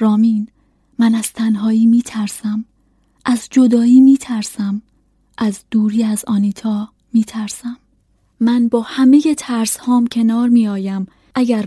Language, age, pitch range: Persian, 20-39, 205-235 Hz